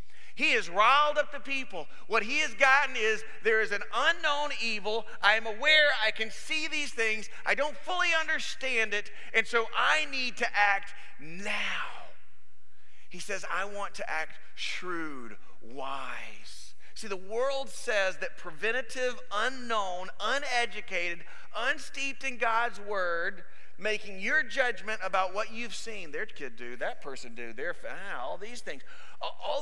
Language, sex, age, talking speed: English, male, 40-59, 150 wpm